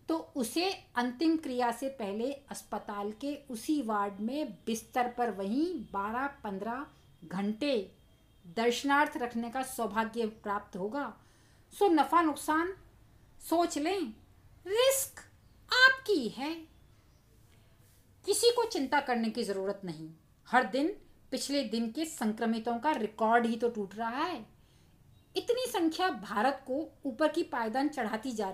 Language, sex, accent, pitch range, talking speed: Hindi, female, native, 220-320 Hz, 125 wpm